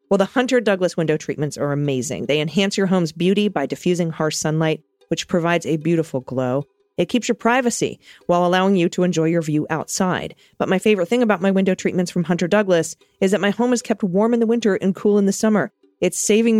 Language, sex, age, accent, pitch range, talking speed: English, female, 40-59, American, 160-205 Hz, 225 wpm